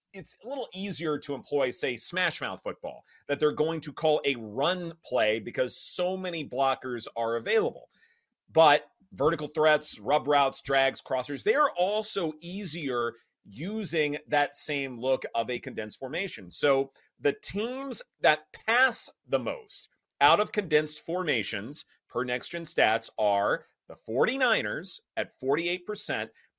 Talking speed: 140 wpm